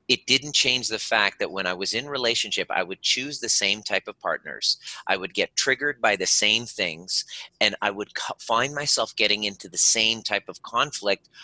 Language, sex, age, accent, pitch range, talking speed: English, male, 30-49, American, 95-125 Hz, 205 wpm